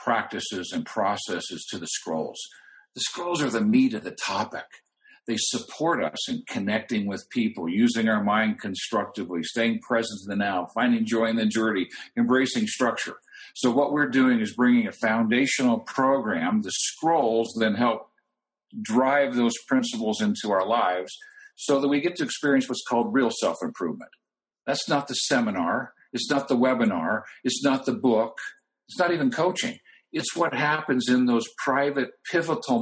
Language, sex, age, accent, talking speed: English, male, 50-69, American, 165 wpm